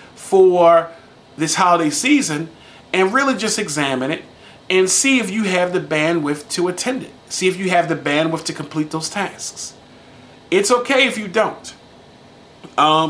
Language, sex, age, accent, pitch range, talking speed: English, male, 40-59, American, 145-185 Hz, 160 wpm